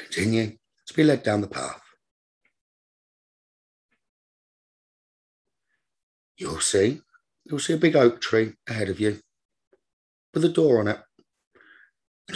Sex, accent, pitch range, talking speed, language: male, British, 95-125 Hz, 115 wpm, English